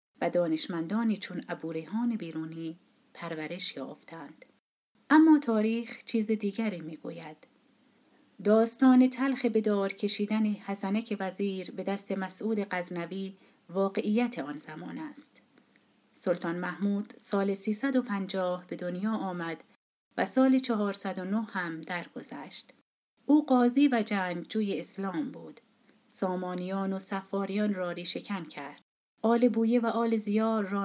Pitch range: 180-230 Hz